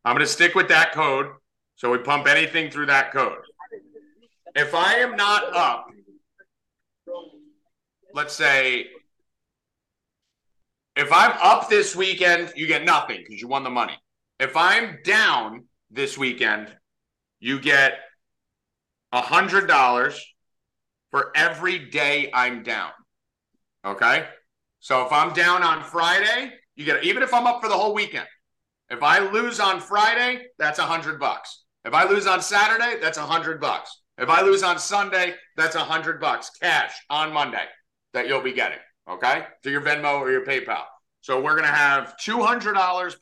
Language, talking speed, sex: English, 155 wpm, male